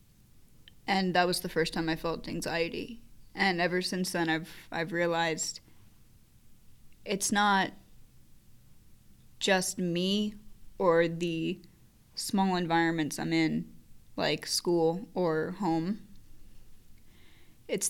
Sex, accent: female, American